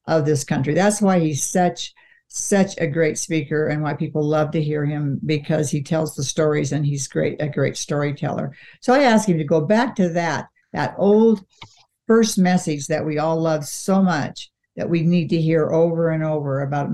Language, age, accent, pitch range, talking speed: English, 60-79, American, 145-165 Hz, 200 wpm